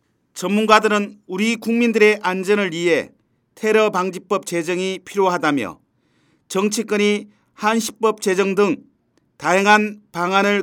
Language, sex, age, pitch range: Korean, male, 40-59, 190-220 Hz